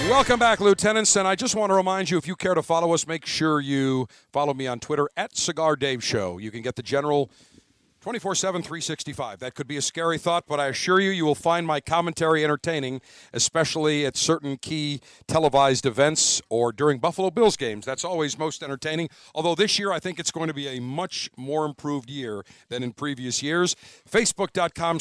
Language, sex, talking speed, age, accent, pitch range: English, male, 200 wpm, 50-69, American, 130-170 Hz